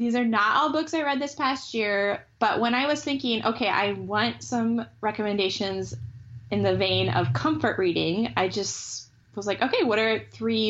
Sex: female